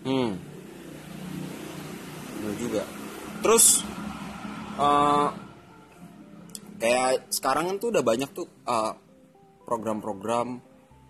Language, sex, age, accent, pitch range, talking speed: Indonesian, male, 20-39, native, 115-140 Hz, 70 wpm